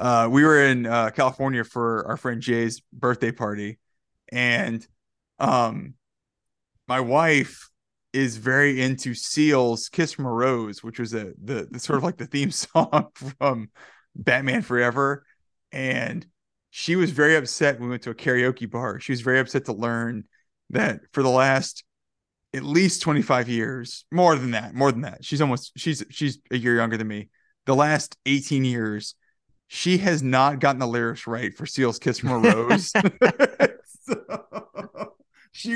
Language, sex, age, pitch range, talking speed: English, male, 20-39, 120-155 Hz, 160 wpm